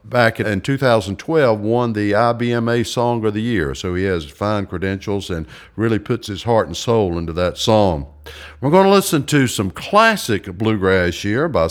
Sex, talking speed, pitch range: male, 180 wpm, 100-140 Hz